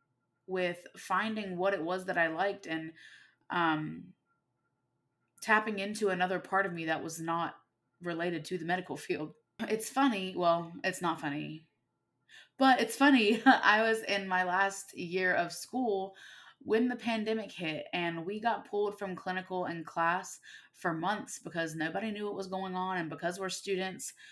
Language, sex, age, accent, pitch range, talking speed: English, female, 20-39, American, 170-210 Hz, 165 wpm